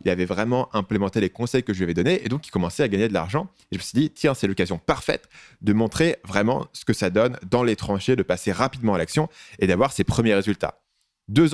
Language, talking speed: French, 255 wpm